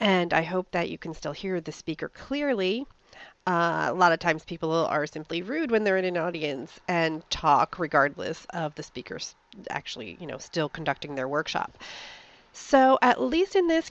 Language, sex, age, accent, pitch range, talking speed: English, female, 40-59, American, 165-225 Hz, 185 wpm